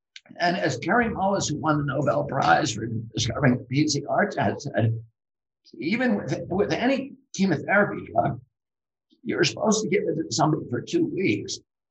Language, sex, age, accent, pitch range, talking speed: English, male, 60-79, American, 145-195 Hz, 145 wpm